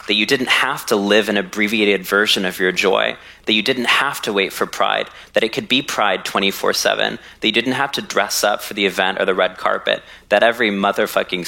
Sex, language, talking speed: male, English, 225 wpm